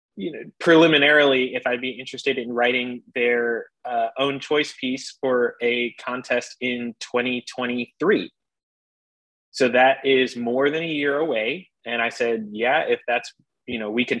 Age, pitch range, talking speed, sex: 20-39, 120-145 Hz, 155 wpm, male